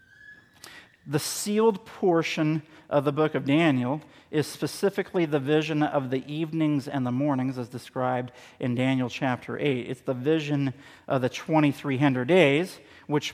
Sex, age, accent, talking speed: male, 50-69, American, 145 wpm